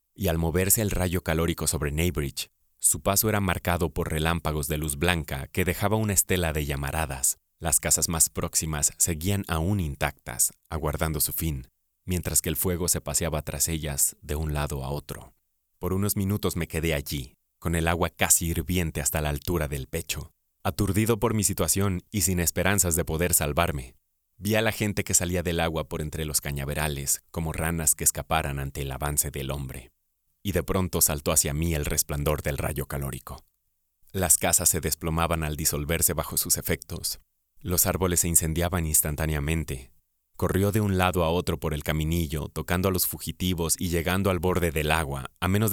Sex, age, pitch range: male, 30-49, 75-90 Hz